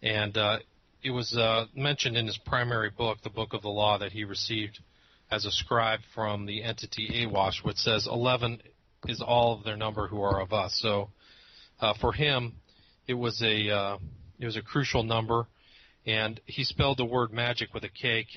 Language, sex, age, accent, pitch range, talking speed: English, male, 40-59, American, 105-120 Hz, 195 wpm